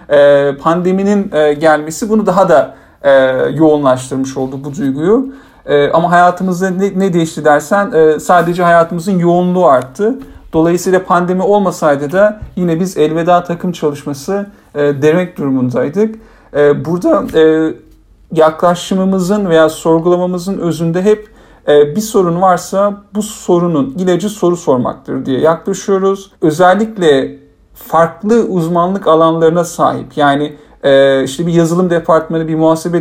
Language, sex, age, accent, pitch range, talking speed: Turkish, male, 50-69, native, 155-195 Hz, 125 wpm